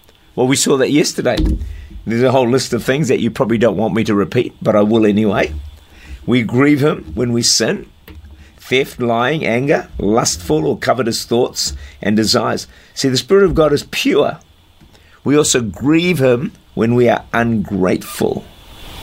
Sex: male